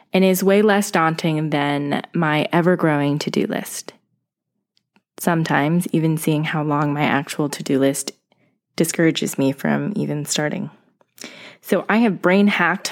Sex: female